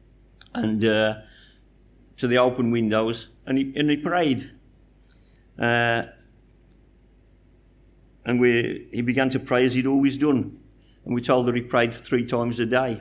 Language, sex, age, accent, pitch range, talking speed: English, male, 50-69, British, 110-130 Hz, 150 wpm